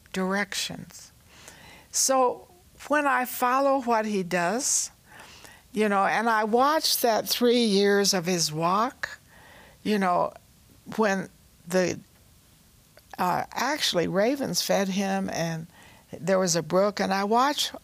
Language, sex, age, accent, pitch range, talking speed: English, female, 60-79, American, 175-225 Hz, 120 wpm